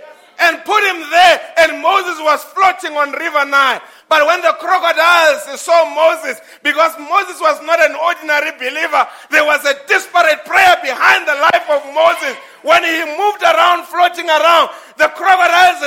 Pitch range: 270-335 Hz